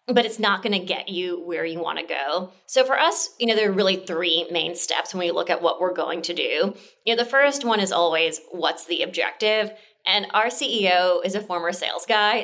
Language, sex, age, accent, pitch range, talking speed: English, female, 20-39, American, 175-235 Hz, 240 wpm